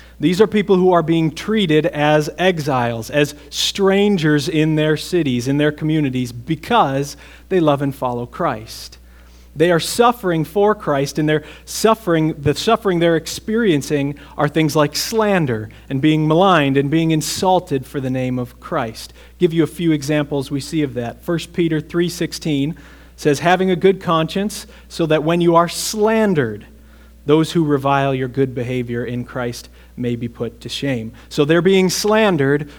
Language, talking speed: English, 165 wpm